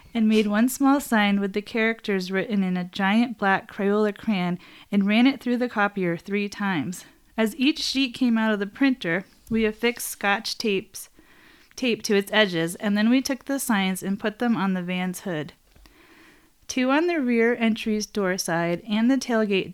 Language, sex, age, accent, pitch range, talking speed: English, female, 30-49, American, 185-240 Hz, 190 wpm